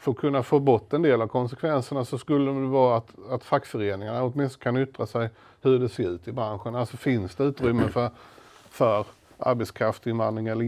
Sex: male